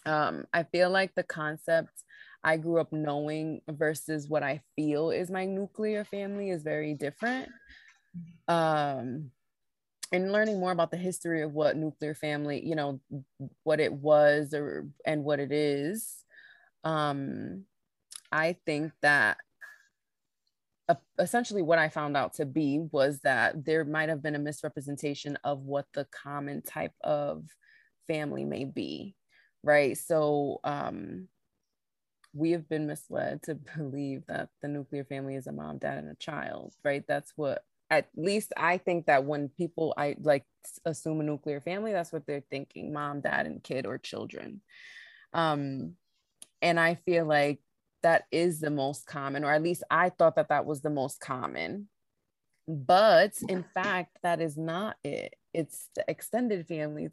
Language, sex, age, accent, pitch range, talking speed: English, female, 20-39, American, 145-170 Hz, 155 wpm